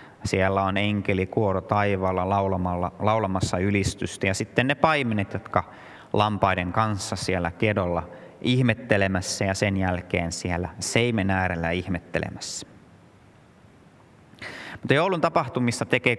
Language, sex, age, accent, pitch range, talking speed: Finnish, male, 30-49, native, 95-120 Hz, 105 wpm